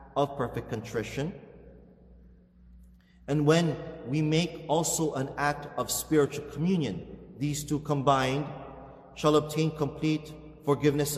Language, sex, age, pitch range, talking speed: English, male, 30-49, 135-160 Hz, 105 wpm